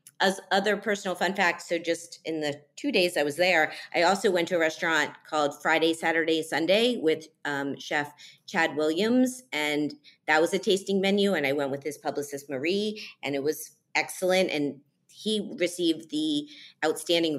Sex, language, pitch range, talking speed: female, English, 140-180 Hz, 175 wpm